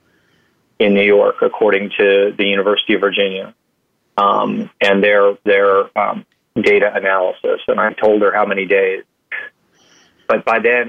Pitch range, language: 100-120 Hz, English